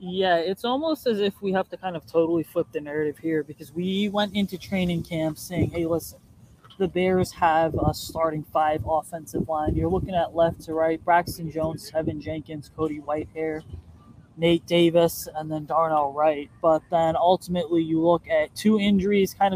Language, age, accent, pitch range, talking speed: English, 20-39, American, 155-180 Hz, 180 wpm